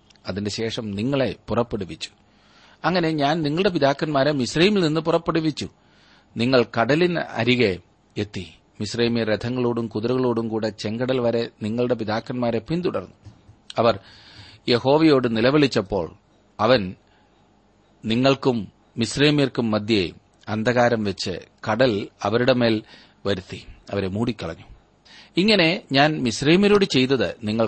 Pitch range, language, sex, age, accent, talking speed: 105-135 Hz, Malayalam, male, 40-59, native, 95 wpm